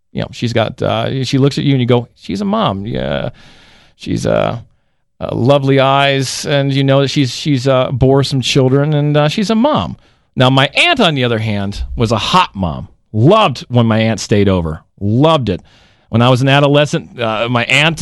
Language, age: English, 40-59